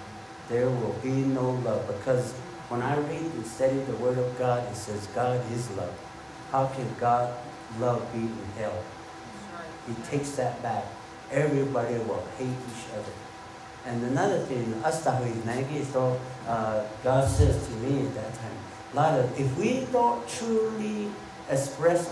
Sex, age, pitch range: male, 60-79, 110-150 Hz